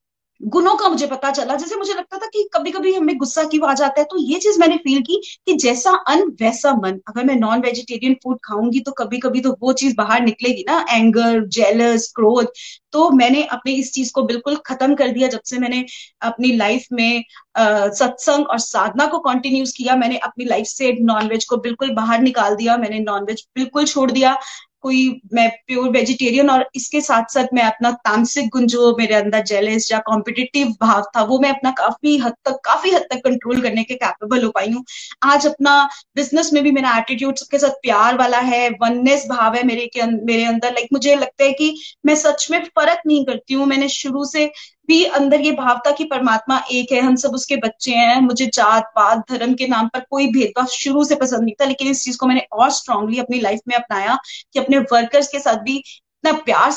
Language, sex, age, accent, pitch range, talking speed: Hindi, female, 20-39, native, 235-285 Hz, 210 wpm